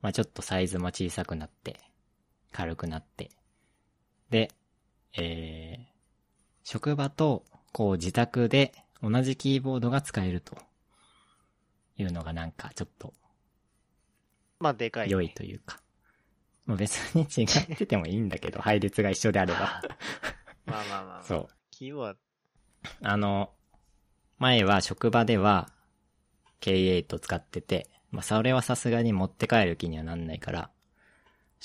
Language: Japanese